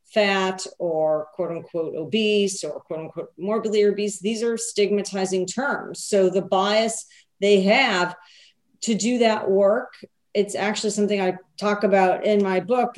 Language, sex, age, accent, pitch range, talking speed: English, female, 40-59, American, 175-210 Hz, 150 wpm